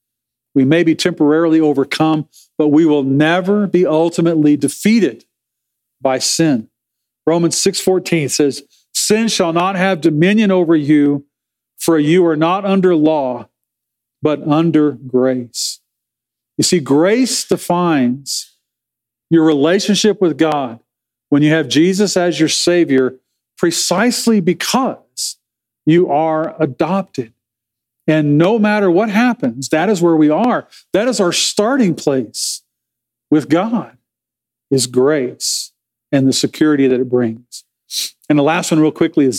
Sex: male